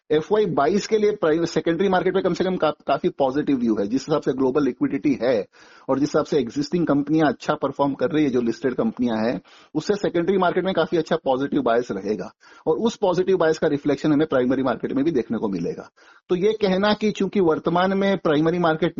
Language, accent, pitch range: Hindi, native, 140-175 Hz